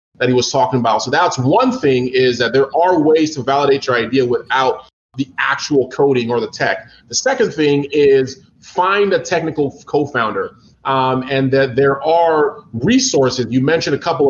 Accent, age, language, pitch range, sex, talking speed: American, 30-49, English, 135-180 Hz, male, 180 wpm